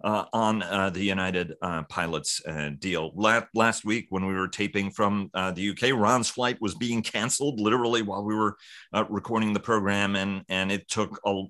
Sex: male